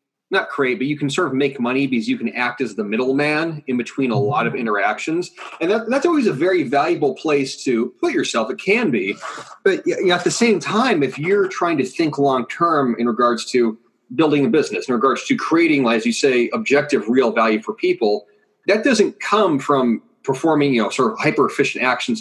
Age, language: 30-49, English